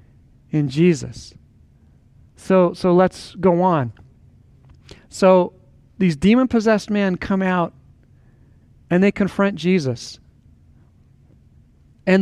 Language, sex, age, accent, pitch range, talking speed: English, male, 40-59, American, 160-210 Hz, 90 wpm